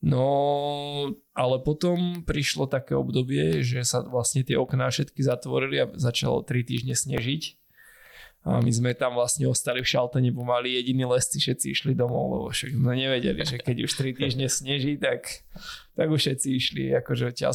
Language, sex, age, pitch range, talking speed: Slovak, male, 20-39, 125-140 Hz, 170 wpm